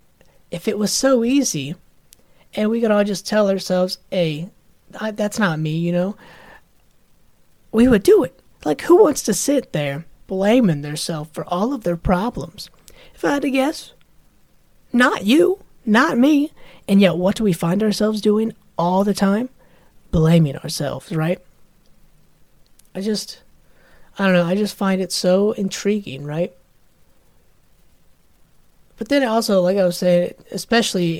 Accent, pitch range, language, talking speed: American, 170-215 Hz, English, 150 wpm